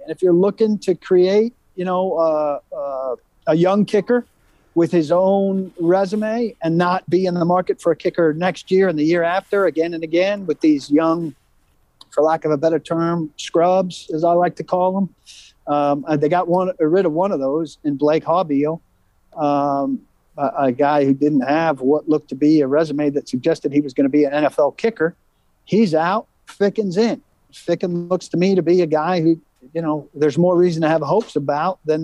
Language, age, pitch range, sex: English, 50-69, 155-180 Hz, male